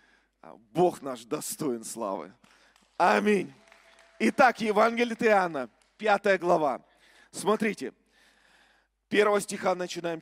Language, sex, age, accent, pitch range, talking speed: Russian, male, 40-59, native, 185-235 Hz, 80 wpm